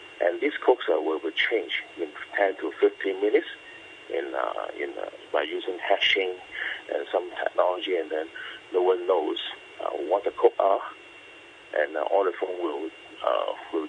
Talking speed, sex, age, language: 175 wpm, male, 50-69, English